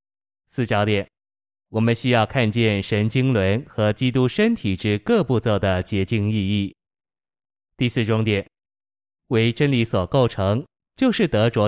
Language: Chinese